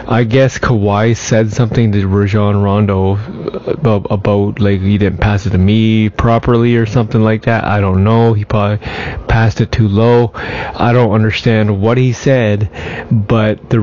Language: English